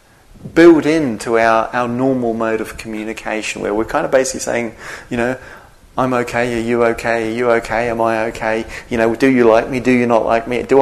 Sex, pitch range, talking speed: male, 110-135 Hz, 215 wpm